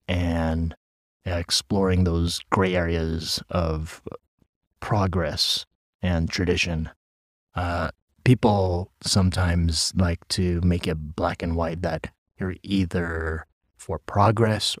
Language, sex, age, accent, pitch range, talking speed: English, male, 30-49, American, 80-95 Hz, 95 wpm